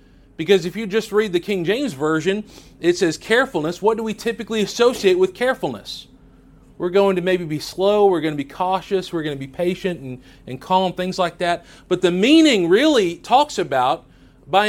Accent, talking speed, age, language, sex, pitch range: American, 195 wpm, 40-59, English, male, 160-215 Hz